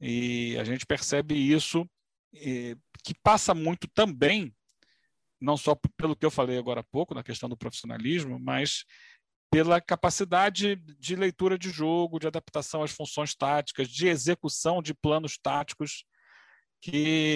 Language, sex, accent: Portuguese, male, Brazilian